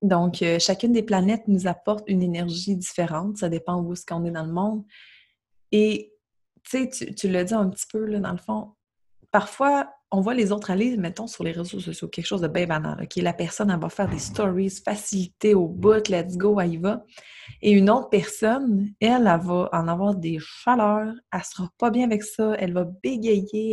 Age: 30-49